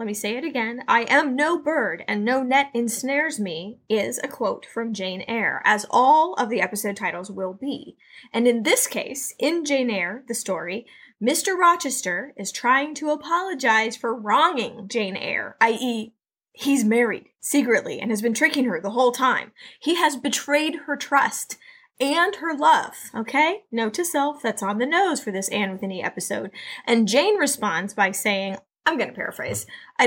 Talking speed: 180 wpm